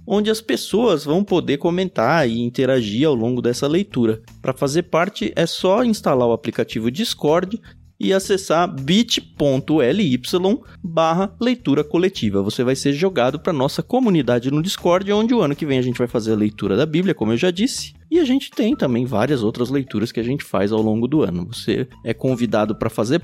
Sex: male